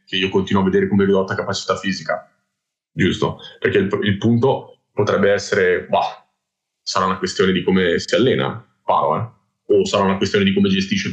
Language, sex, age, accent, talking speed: Italian, male, 20-39, native, 185 wpm